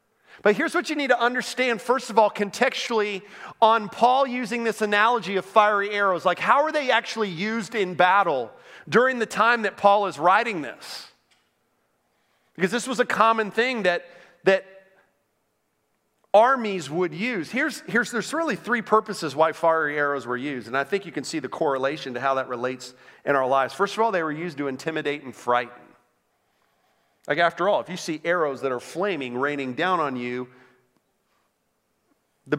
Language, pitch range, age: English, 135-210 Hz, 40-59